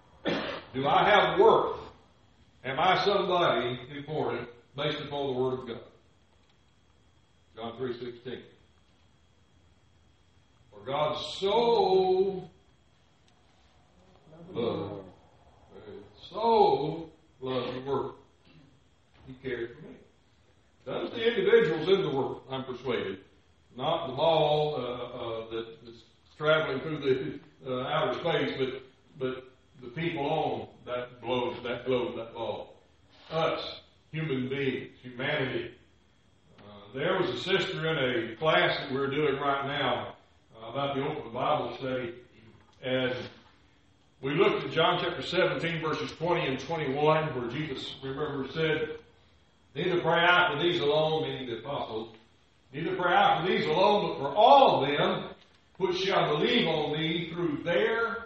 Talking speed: 130 wpm